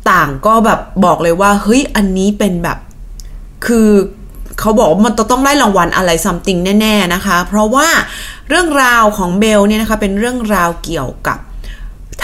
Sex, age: female, 20-39